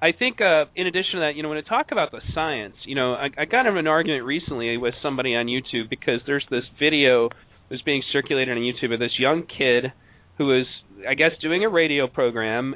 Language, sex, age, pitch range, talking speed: English, male, 30-49, 125-165 Hz, 230 wpm